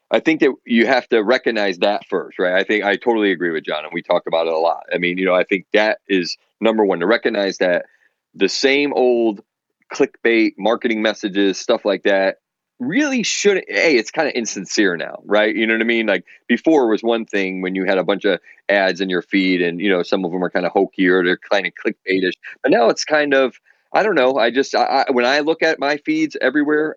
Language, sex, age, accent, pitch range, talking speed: English, male, 30-49, American, 95-130 Hz, 245 wpm